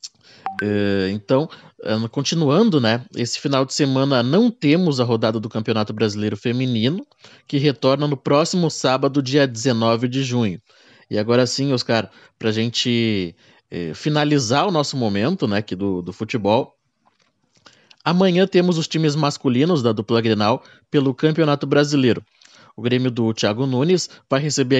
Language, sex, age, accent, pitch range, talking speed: Portuguese, male, 20-39, Brazilian, 110-140 Hz, 145 wpm